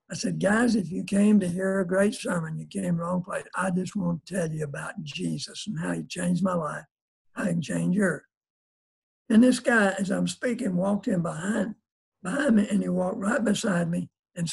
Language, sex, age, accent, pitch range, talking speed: English, male, 60-79, American, 180-215 Hz, 210 wpm